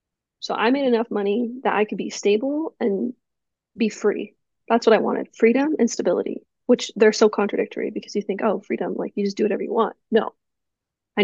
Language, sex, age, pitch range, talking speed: English, female, 30-49, 205-240 Hz, 205 wpm